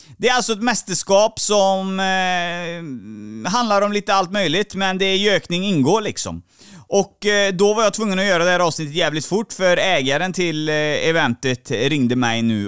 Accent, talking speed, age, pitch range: native, 175 wpm, 30-49, 125-190 Hz